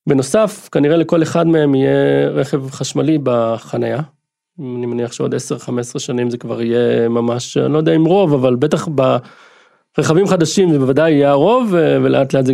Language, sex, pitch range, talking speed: Hebrew, male, 125-170 Hz, 165 wpm